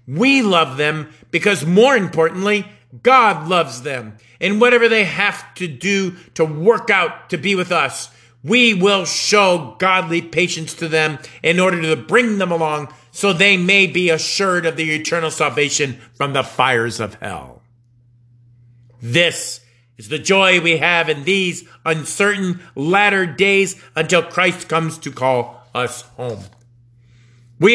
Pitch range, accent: 130-200 Hz, American